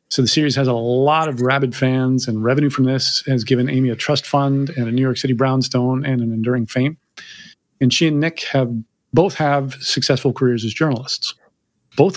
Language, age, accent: English, 40-59, American